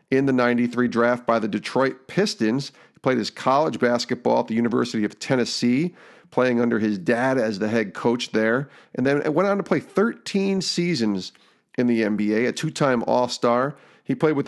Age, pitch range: 40-59, 115-145 Hz